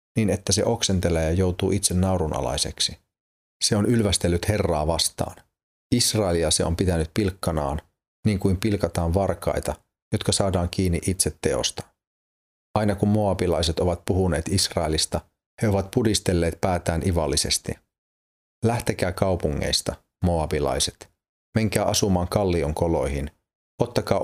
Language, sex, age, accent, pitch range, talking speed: Finnish, male, 30-49, native, 85-105 Hz, 115 wpm